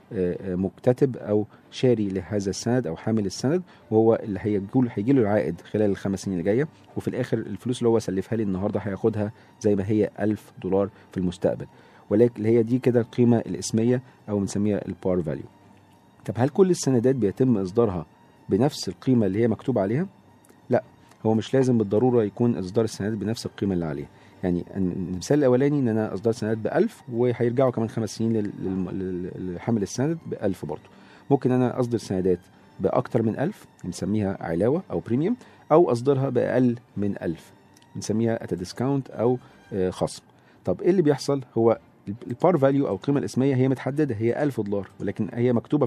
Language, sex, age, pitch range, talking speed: Arabic, male, 40-59, 100-125 Hz, 160 wpm